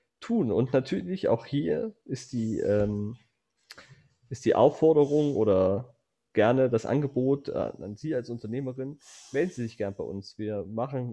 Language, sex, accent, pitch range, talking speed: German, male, German, 110-130 Hz, 145 wpm